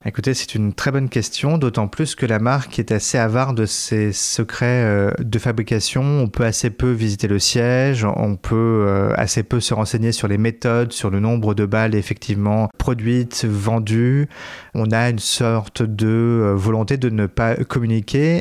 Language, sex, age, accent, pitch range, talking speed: French, male, 30-49, French, 105-125 Hz, 175 wpm